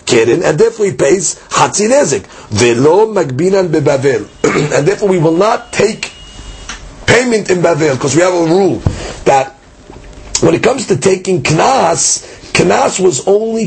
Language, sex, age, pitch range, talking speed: English, male, 40-59, 165-215 Hz, 135 wpm